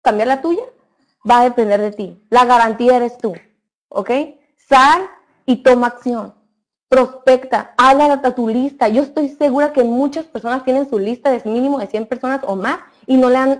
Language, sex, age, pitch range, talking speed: Spanish, female, 30-49, 220-270 Hz, 185 wpm